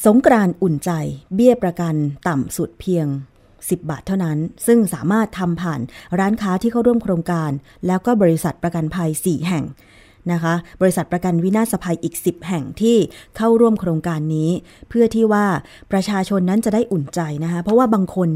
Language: Thai